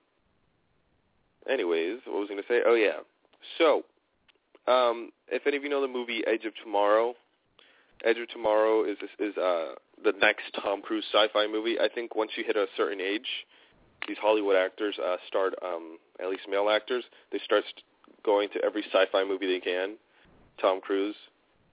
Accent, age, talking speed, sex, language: American, 30-49, 175 wpm, male, English